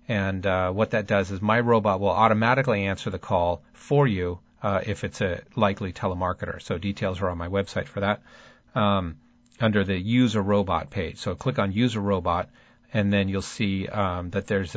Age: 40-59